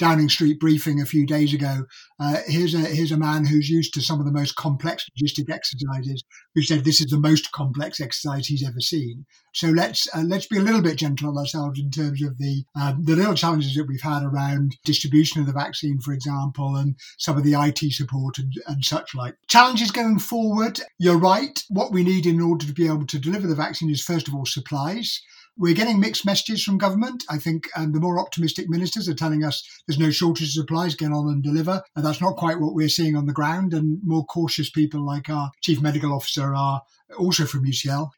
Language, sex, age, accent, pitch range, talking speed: English, male, 50-69, British, 145-170 Hz, 225 wpm